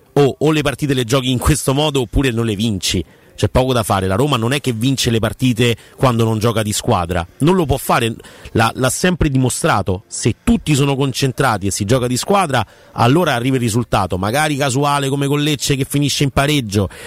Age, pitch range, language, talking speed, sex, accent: 40-59, 105-130 Hz, Italian, 205 wpm, male, native